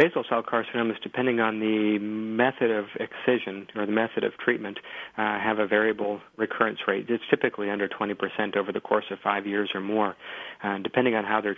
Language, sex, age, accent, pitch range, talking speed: English, male, 40-59, American, 100-110 Hz, 190 wpm